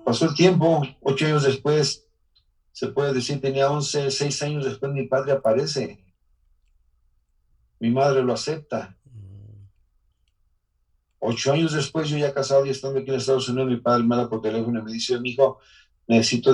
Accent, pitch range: Mexican, 110-135 Hz